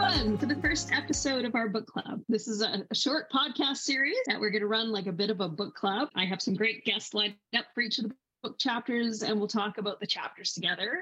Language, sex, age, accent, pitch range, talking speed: English, female, 30-49, American, 205-260 Hz, 255 wpm